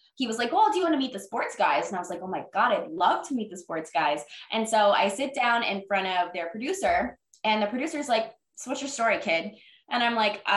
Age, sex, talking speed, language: 20-39, female, 275 wpm, English